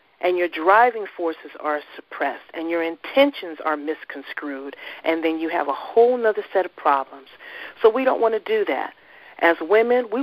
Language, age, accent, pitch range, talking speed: English, 50-69, American, 165-240 Hz, 180 wpm